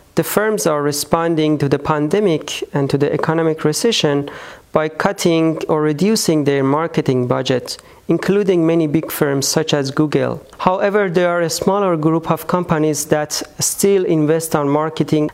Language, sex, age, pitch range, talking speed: French, male, 40-59, 145-170 Hz, 155 wpm